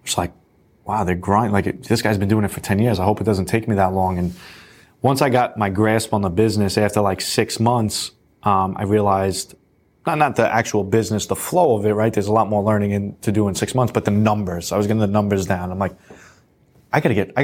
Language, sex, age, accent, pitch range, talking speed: English, male, 20-39, American, 100-115 Hz, 260 wpm